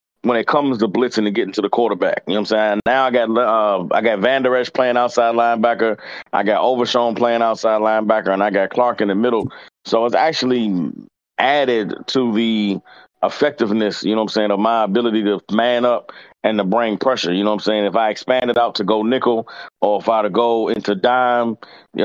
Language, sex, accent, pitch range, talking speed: English, male, American, 105-120 Hz, 230 wpm